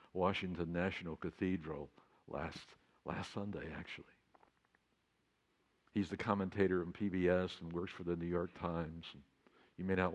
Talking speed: 130 wpm